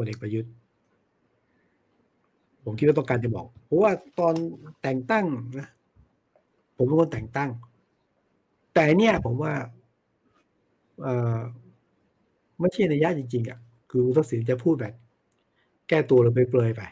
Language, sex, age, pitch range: Thai, male, 60-79, 120-150 Hz